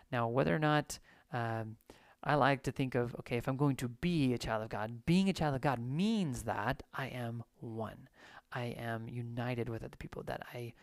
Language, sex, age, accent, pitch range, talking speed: English, male, 30-49, American, 120-140 Hz, 210 wpm